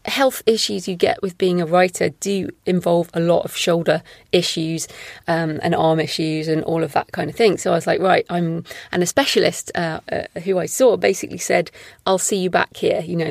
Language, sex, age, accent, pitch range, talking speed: English, female, 30-49, British, 165-215 Hz, 220 wpm